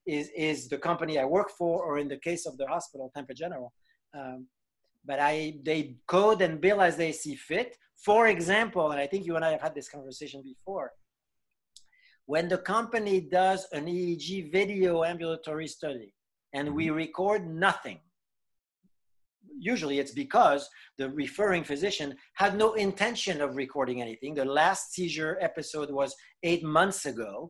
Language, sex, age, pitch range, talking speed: English, male, 40-59, 145-200 Hz, 160 wpm